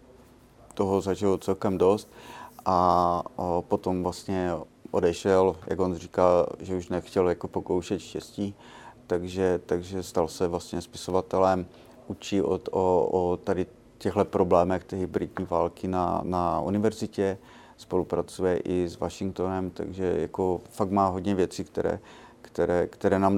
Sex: male